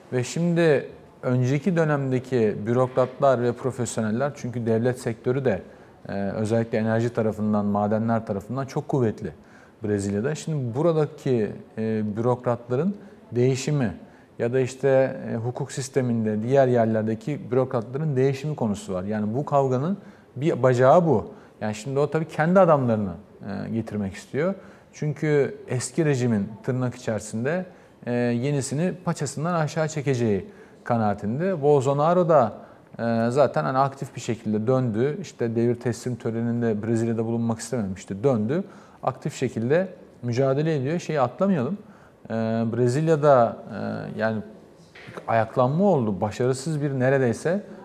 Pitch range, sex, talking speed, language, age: 115-150 Hz, male, 115 wpm, Turkish, 40-59